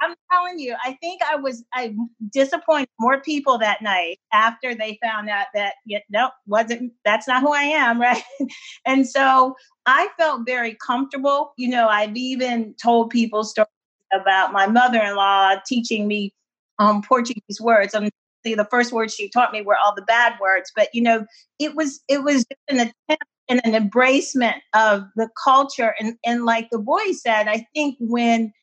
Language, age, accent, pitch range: English, 40-59, American, 220-260 Hz